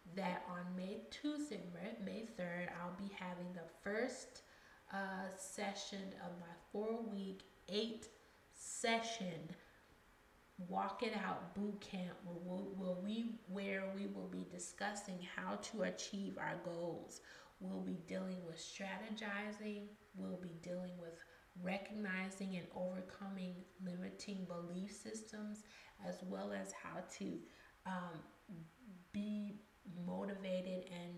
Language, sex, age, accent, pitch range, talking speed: English, female, 30-49, American, 180-205 Hz, 115 wpm